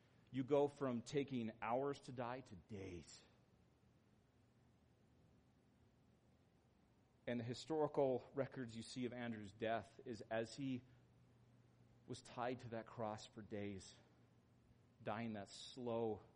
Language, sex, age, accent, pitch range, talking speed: English, male, 40-59, American, 110-135 Hz, 115 wpm